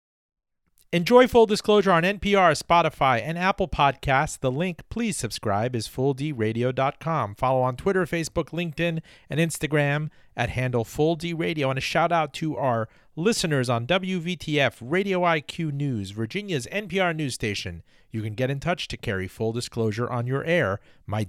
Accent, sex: American, male